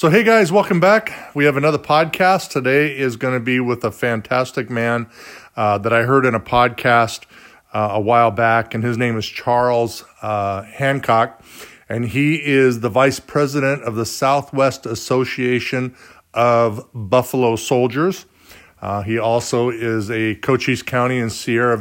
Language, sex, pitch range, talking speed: English, male, 110-130 Hz, 160 wpm